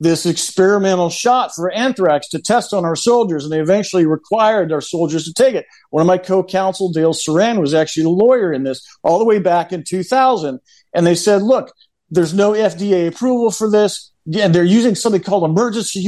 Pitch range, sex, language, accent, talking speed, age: 185-250 Hz, male, English, American, 200 wpm, 50-69